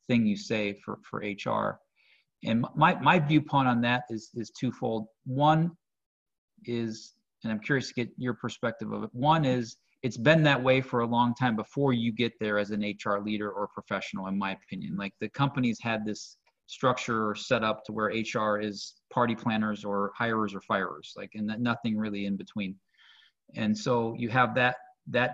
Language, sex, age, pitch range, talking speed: English, male, 30-49, 110-130 Hz, 190 wpm